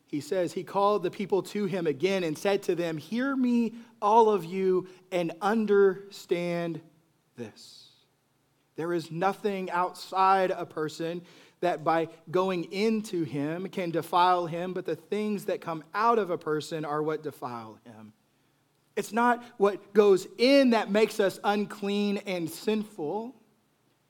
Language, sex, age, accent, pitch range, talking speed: English, male, 30-49, American, 150-205 Hz, 145 wpm